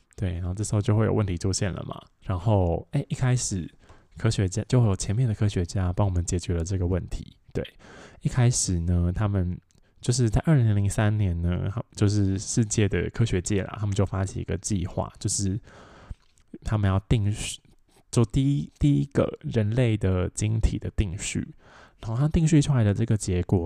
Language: Chinese